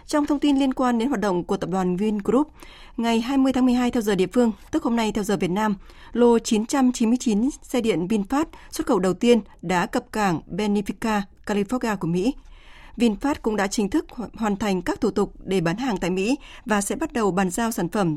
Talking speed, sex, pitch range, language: 220 wpm, female, 195-245 Hz, Vietnamese